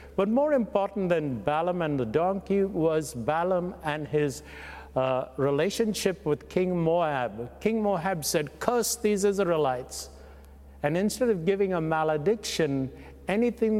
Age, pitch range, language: 60-79, 135-190 Hz, English